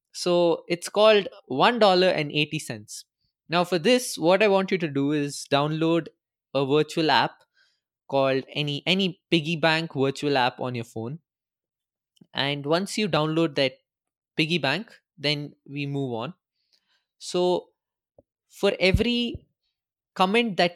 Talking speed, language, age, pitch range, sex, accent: 125 wpm, English, 20-39, 130-170 Hz, male, Indian